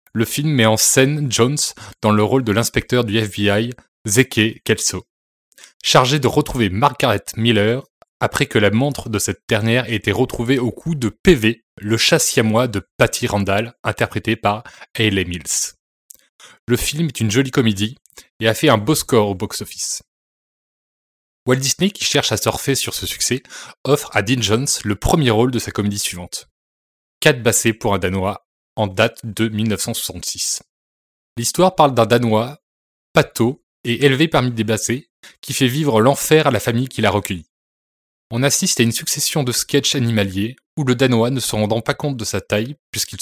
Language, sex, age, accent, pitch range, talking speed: French, male, 20-39, French, 105-135 Hz, 175 wpm